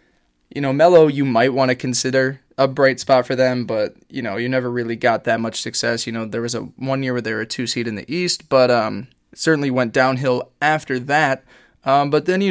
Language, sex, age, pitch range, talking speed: English, male, 20-39, 120-145 Hz, 240 wpm